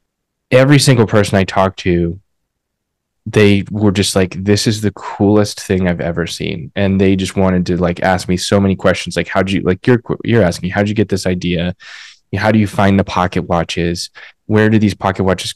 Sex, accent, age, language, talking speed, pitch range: male, American, 20-39, English, 205 wpm, 90-105 Hz